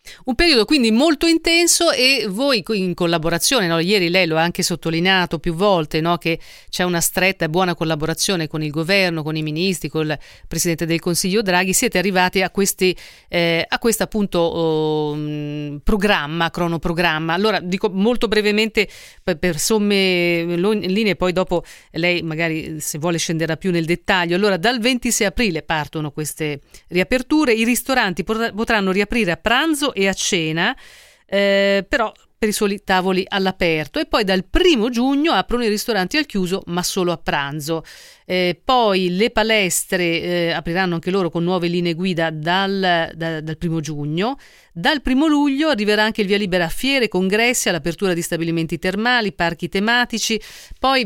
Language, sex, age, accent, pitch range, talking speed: Italian, female, 40-59, native, 170-220 Hz, 165 wpm